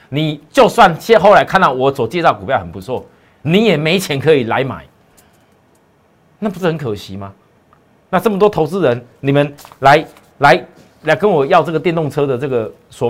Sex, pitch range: male, 125-195 Hz